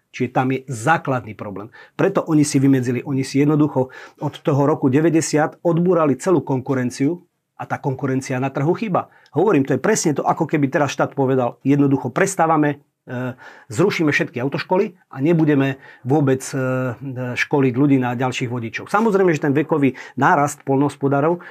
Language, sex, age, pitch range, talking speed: Slovak, male, 40-59, 135-165 Hz, 150 wpm